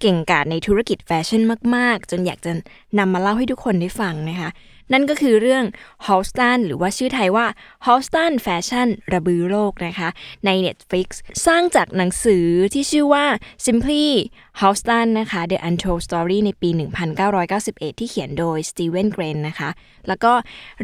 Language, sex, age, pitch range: Thai, female, 20-39, 175-225 Hz